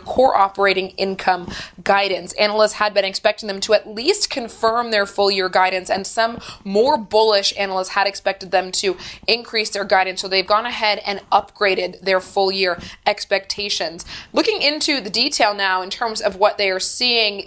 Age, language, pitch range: 20-39, English, 195-220 Hz